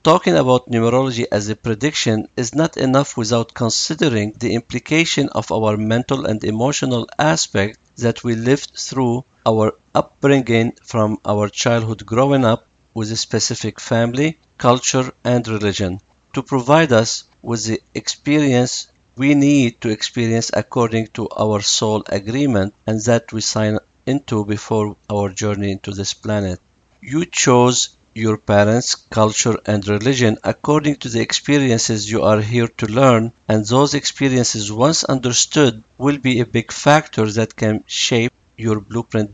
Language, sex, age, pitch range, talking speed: English, male, 50-69, 105-130 Hz, 145 wpm